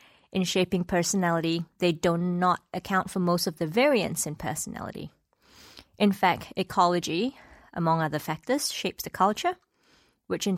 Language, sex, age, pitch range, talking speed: English, female, 20-39, 170-220 Hz, 140 wpm